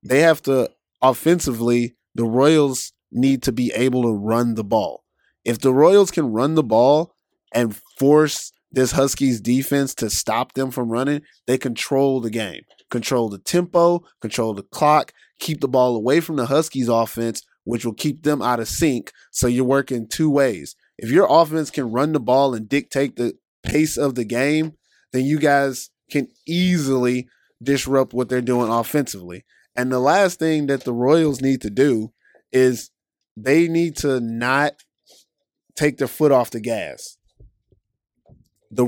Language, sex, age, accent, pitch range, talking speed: English, male, 20-39, American, 120-145 Hz, 165 wpm